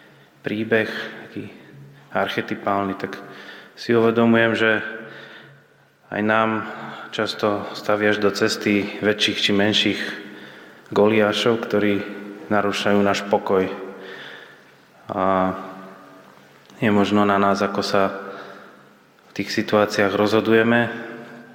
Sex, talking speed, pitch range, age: male, 90 wpm, 95-105 Hz, 20-39